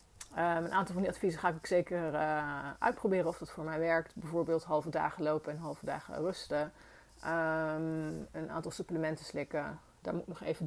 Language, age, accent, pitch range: Dutch, 30-49, Dutch, 165-190 Hz